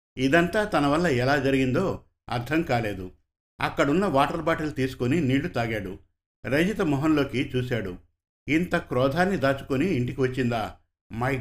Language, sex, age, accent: Telugu, male, 50-69, native